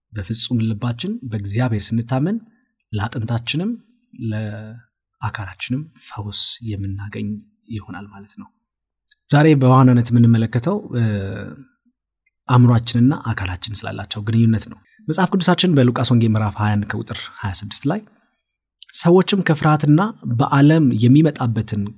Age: 20-39